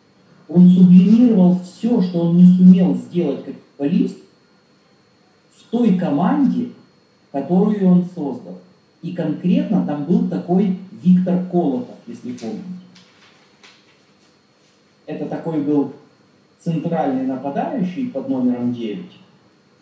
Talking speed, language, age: 100 wpm, Russian, 40-59